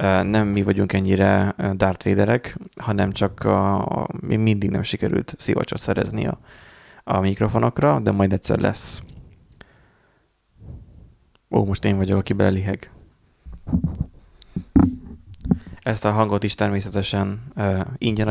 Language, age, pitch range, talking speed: Hungarian, 20-39, 100-115 Hz, 110 wpm